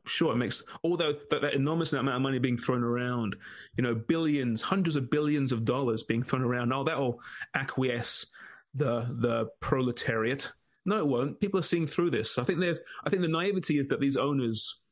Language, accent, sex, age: English, British, male, 30-49